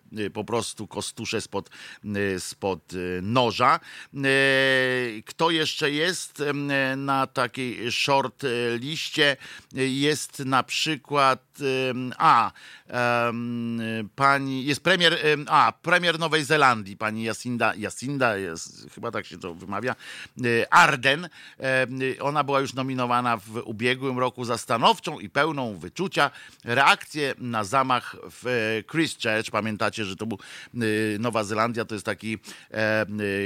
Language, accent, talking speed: Polish, native, 110 wpm